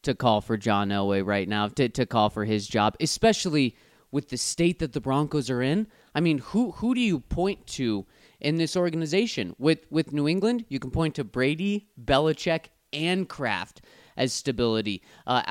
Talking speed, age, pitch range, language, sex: 185 wpm, 30-49, 125-180 Hz, English, male